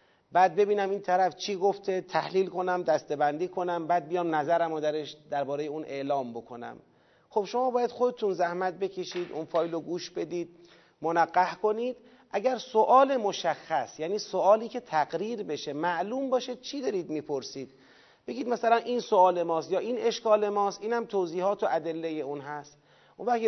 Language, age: Persian, 40-59